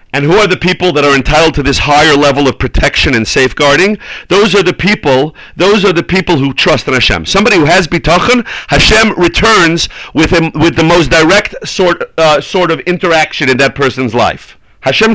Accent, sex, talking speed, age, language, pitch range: American, male, 200 wpm, 40-59, English, 145-180 Hz